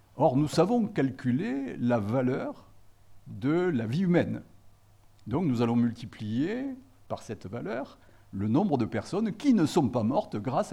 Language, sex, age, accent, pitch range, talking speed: French, male, 60-79, French, 105-135 Hz, 150 wpm